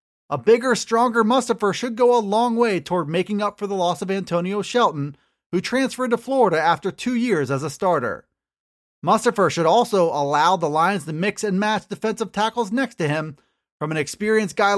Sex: male